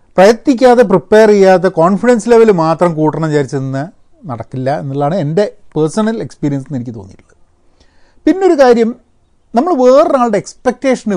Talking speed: 105 wpm